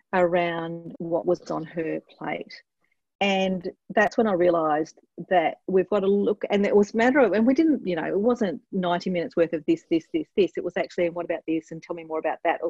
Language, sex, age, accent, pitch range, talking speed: English, female, 40-59, Australian, 165-220 Hz, 235 wpm